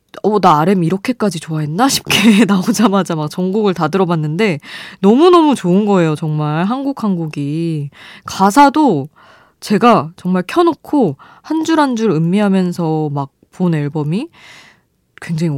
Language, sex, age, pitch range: Korean, female, 20-39, 155-220 Hz